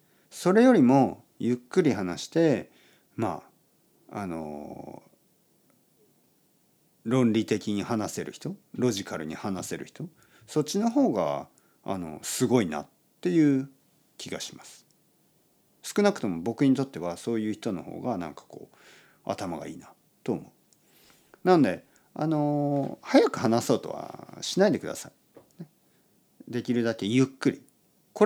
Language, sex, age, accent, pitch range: Japanese, male, 50-69, native, 105-170 Hz